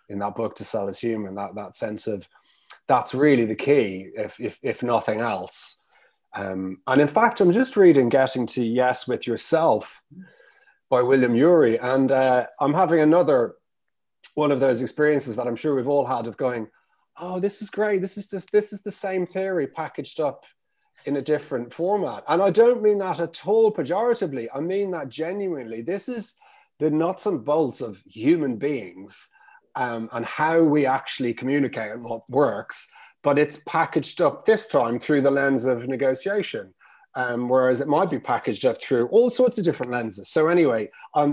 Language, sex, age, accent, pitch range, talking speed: English, male, 30-49, British, 120-180 Hz, 185 wpm